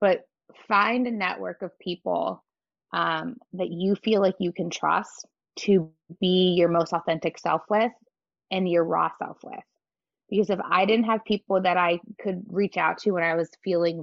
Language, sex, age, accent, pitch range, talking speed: English, female, 20-39, American, 170-195 Hz, 180 wpm